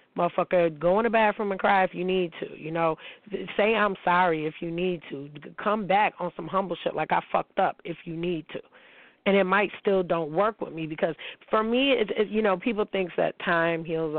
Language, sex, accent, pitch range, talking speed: English, female, American, 160-190 Hz, 230 wpm